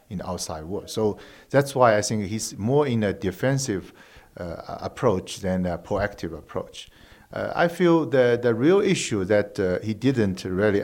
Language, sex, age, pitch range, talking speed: English, male, 50-69, 105-135 Hz, 170 wpm